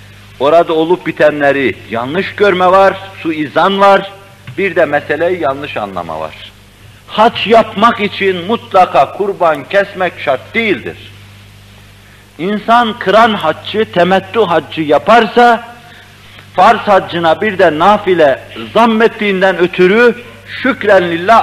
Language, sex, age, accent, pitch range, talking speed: Turkish, male, 60-79, native, 135-210 Hz, 105 wpm